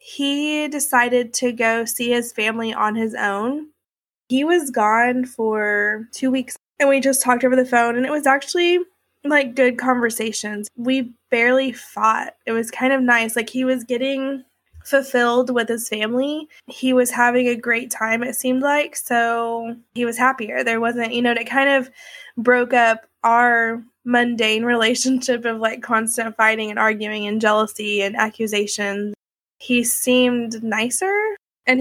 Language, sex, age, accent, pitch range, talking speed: English, female, 20-39, American, 230-260 Hz, 160 wpm